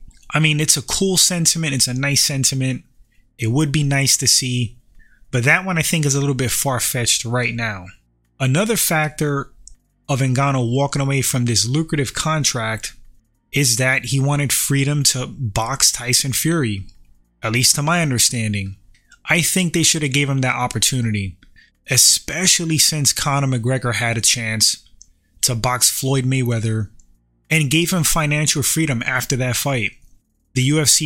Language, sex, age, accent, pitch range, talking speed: English, male, 20-39, American, 115-145 Hz, 160 wpm